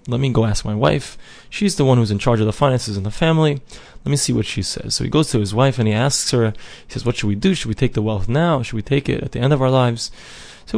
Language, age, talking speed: English, 20-39, 315 wpm